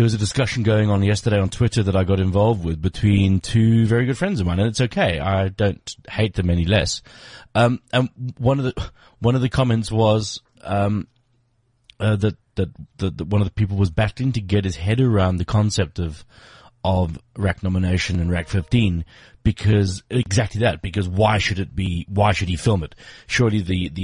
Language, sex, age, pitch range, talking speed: English, male, 30-49, 95-120 Hz, 205 wpm